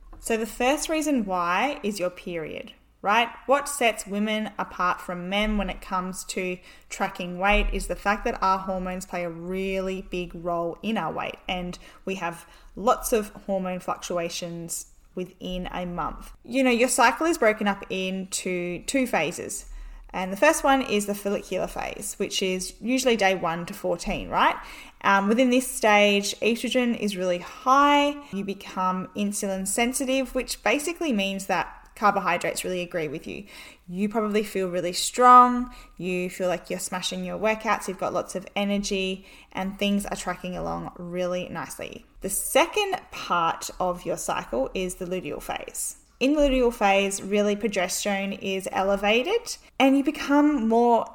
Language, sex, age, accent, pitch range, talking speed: English, female, 10-29, Australian, 185-240 Hz, 160 wpm